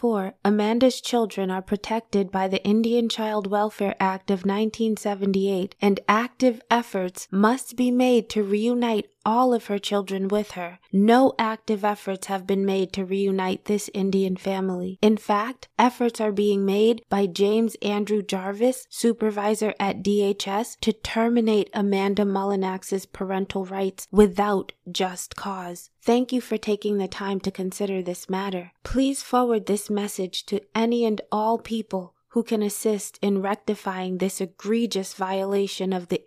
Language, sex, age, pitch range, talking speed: English, female, 20-39, 190-220 Hz, 145 wpm